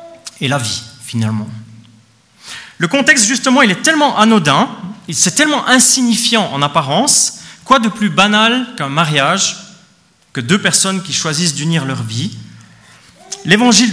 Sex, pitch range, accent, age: male, 155-230 Hz, French, 30-49